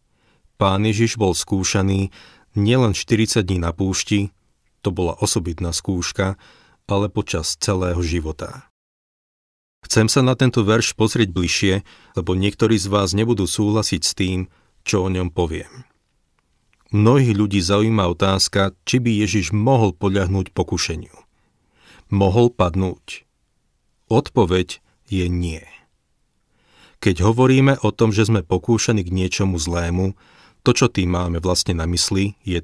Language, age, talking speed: Slovak, 40-59, 125 wpm